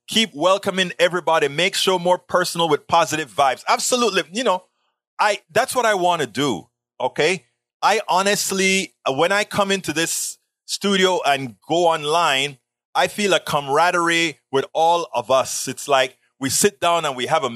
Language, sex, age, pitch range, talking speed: English, male, 30-49, 140-180 Hz, 170 wpm